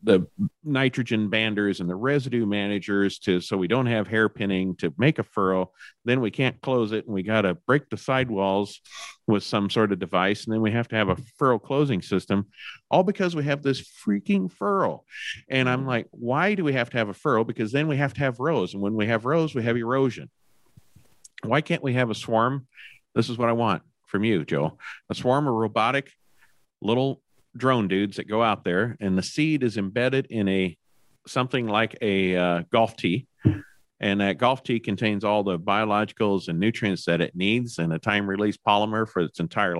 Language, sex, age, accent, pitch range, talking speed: English, male, 50-69, American, 100-125 Hz, 205 wpm